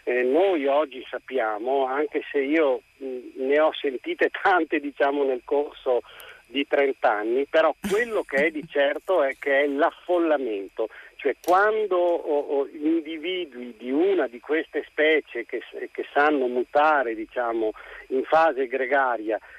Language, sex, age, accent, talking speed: Italian, male, 50-69, native, 140 wpm